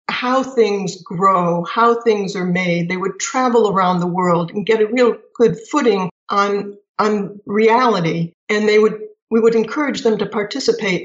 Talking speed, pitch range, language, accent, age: 170 wpm, 185-230 Hz, English, American, 60-79